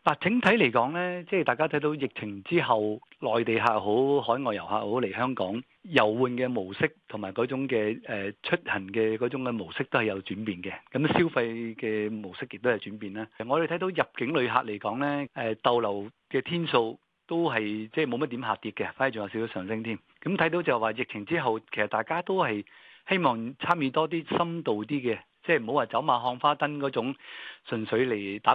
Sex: male